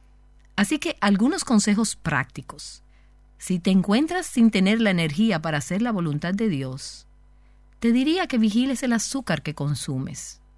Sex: female